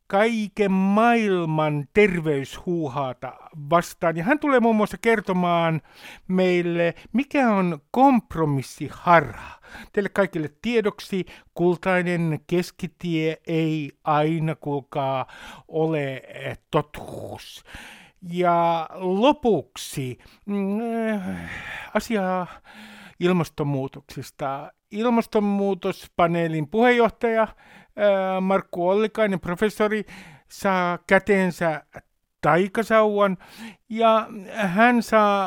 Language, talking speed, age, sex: Finnish, 65 wpm, 60-79, male